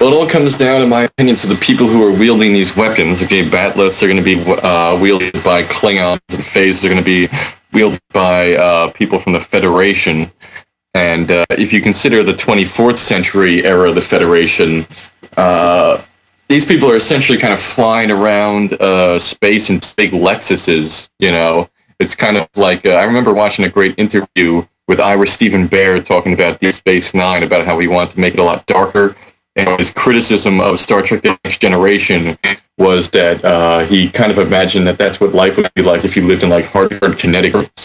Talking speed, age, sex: 210 wpm, 30-49, male